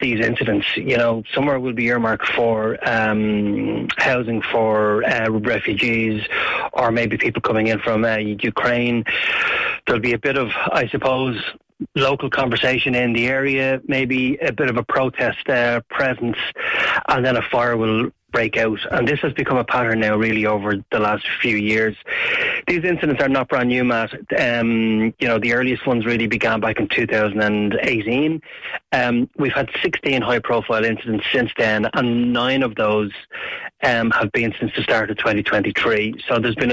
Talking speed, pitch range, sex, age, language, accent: 170 wpm, 110-130 Hz, male, 30-49, English, Irish